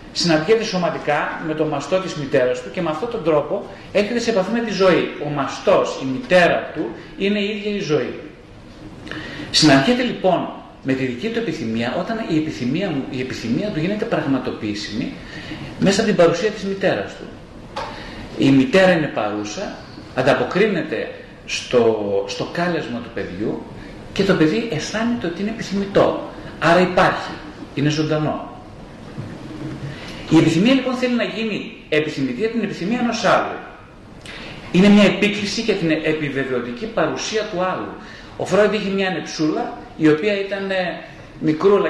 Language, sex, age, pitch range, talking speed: Greek, male, 30-49, 150-210 Hz, 145 wpm